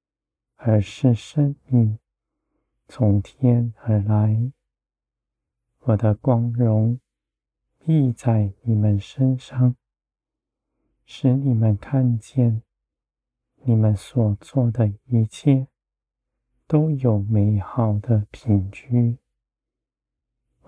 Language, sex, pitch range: Chinese, male, 105-125 Hz